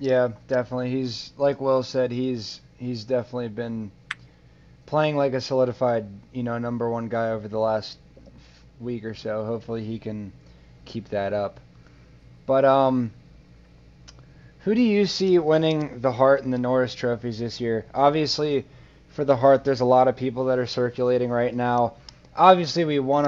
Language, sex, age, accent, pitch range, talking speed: English, male, 20-39, American, 120-135 Hz, 160 wpm